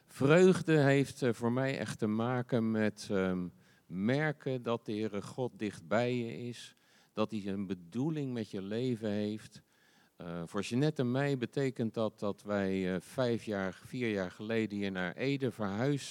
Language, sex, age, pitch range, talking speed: Dutch, male, 50-69, 100-135 Hz, 165 wpm